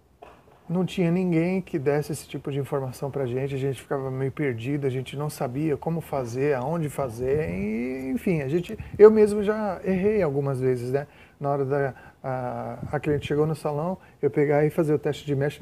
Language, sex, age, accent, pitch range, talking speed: Portuguese, male, 30-49, Brazilian, 135-165 Hz, 195 wpm